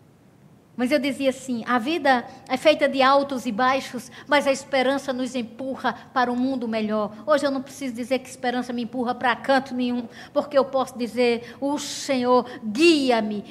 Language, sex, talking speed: Portuguese, female, 180 wpm